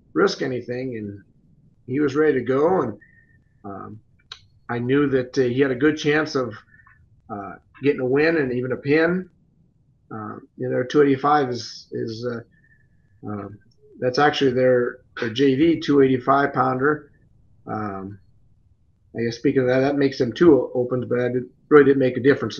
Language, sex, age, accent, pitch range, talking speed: English, male, 40-59, American, 110-140 Hz, 165 wpm